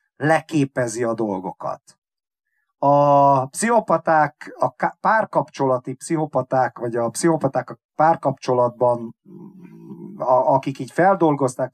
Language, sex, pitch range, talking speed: Hungarian, male, 125-165 Hz, 90 wpm